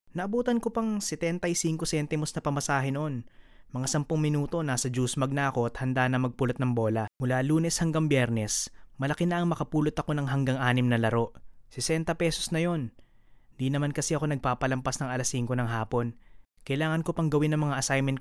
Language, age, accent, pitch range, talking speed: English, 20-39, Filipino, 120-155 Hz, 180 wpm